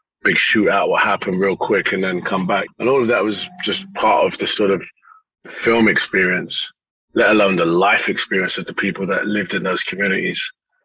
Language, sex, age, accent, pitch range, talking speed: English, male, 30-49, British, 95-110 Hz, 200 wpm